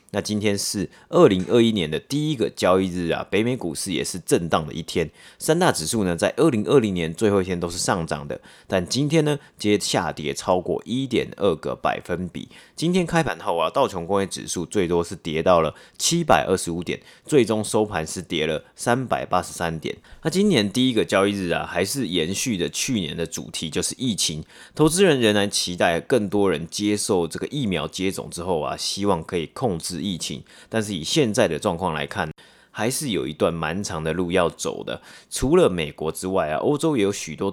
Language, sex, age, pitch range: Chinese, male, 30-49, 85-120 Hz